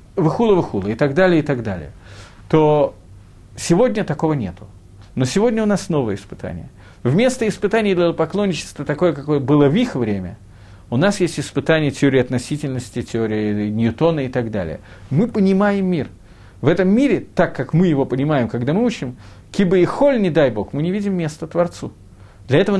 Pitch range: 115-175 Hz